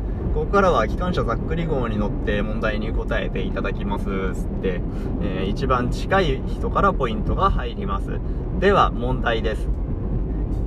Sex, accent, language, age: male, native, Japanese, 20-39